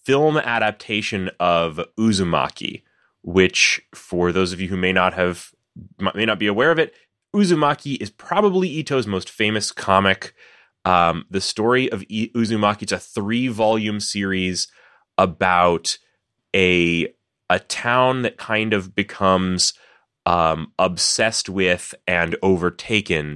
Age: 30-49